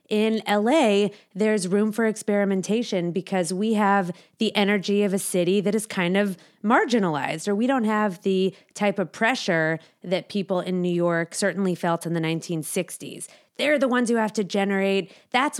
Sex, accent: female, American